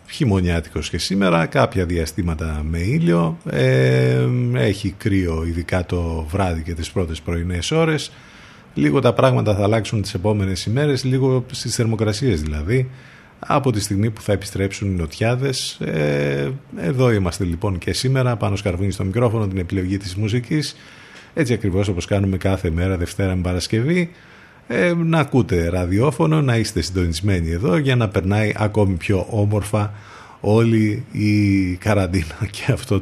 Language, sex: Greek, male